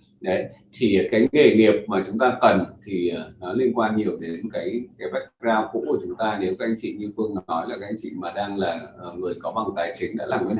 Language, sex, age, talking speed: Vietnamese, male, 20-39, 260 wpm